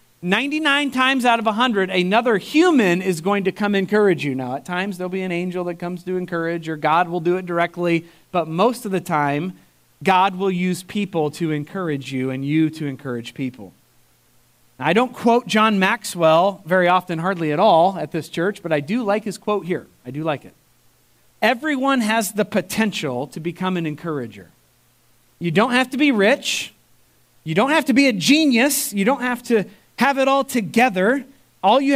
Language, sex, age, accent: English, male, 40-59, American